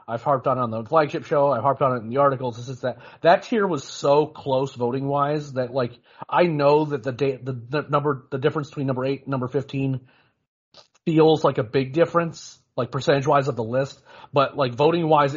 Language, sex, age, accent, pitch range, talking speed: English, male, 30-49, American, 125-155 Hz, 205 wpm